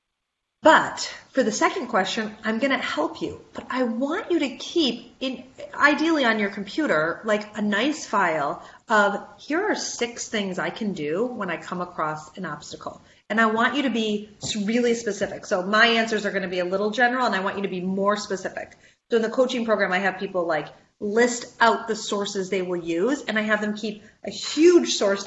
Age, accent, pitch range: 30-49, American, 185-240 Hz